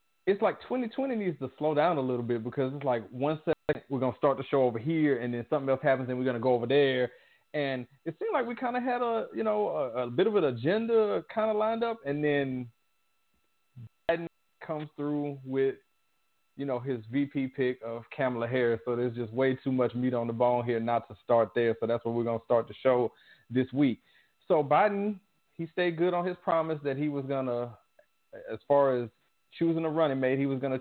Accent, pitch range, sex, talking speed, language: American, 125-155 Hz, male, 230 wpm, English